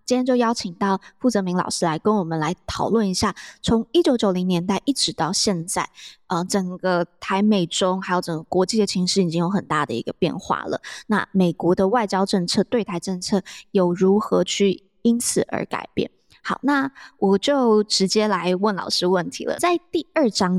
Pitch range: 180-220 Hz